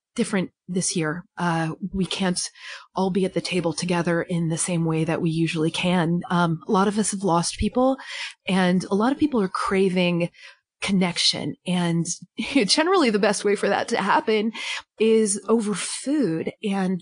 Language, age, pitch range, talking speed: English, 30-49, 180-225 Hz, 175 wpm